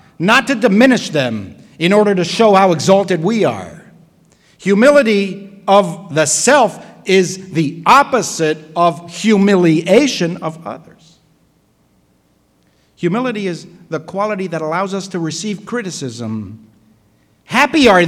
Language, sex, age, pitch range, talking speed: English, male, 60-79, 140-195 Hz, 115 wpm